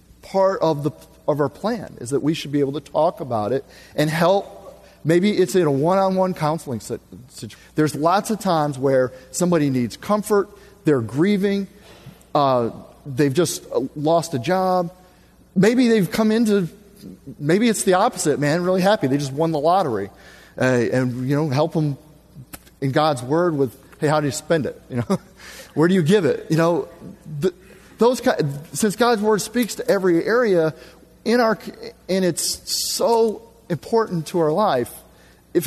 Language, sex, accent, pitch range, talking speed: English, male, American, 150-195 Hz, 170 wpm